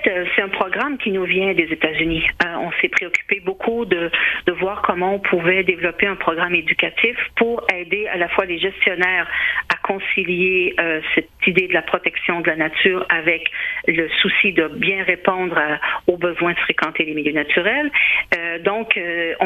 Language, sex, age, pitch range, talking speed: French, female, 50-69, 175-245 Hz, 175 wpm